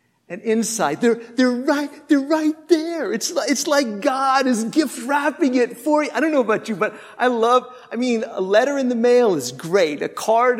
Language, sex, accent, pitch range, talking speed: English, male, American, 220-280 Hz, 215 wpm